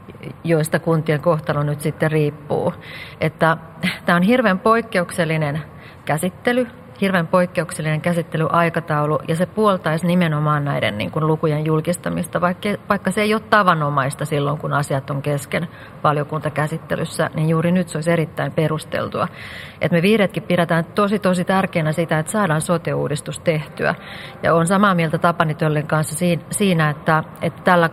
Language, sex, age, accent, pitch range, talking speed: Finnish, female, 40-59, native, 155-185 Hz, 140 wpm